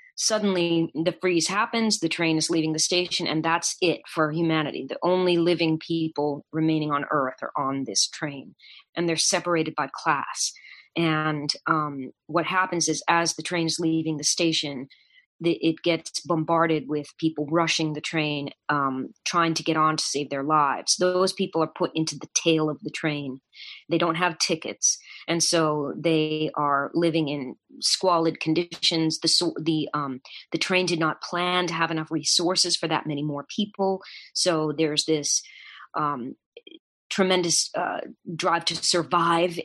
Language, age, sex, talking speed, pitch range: English, 30-49, female, 165 wpm, 150-170 Hz